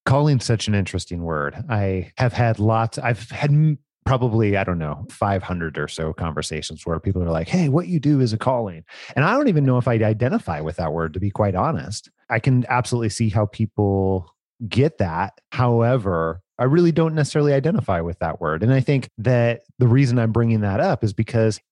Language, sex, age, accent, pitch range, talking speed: English, male, 30-49, American, 95-125 Hz, 205 wpm